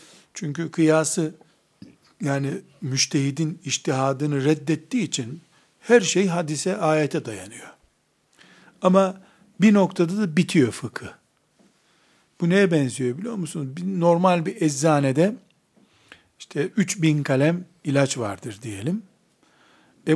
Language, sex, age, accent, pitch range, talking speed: Turkish, male, 60-79, native, 140-180 Hz, 100 wpm